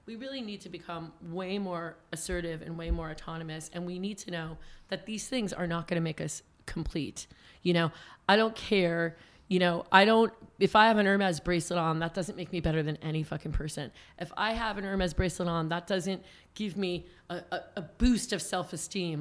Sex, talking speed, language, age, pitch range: female, 215 wpm, English, 40-59, 165-195 Hz